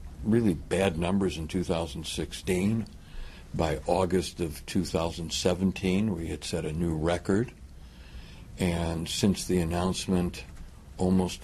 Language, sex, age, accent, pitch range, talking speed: English, male, 60-79, American, 75-90 Hz, 105 wpm